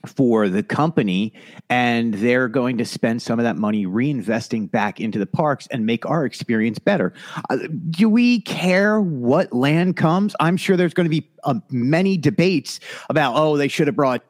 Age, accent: 50-69, American